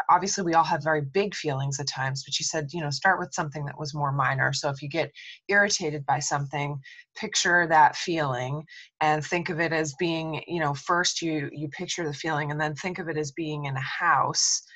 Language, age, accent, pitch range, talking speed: English, 20-39, American, 145-170 Hz, 225 wpm